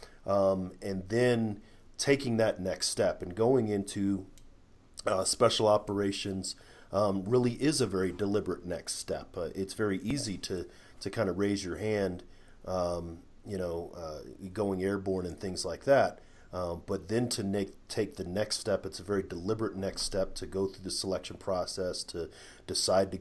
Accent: American